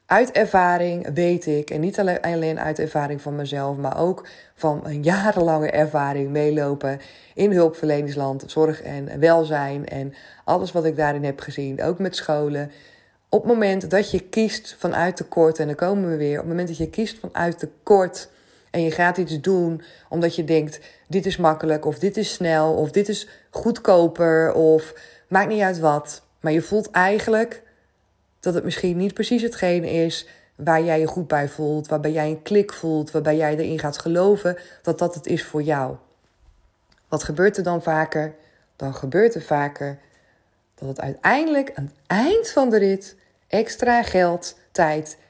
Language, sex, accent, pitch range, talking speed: Dutch, female, Dutch, 150-190 Hz, 175 wpm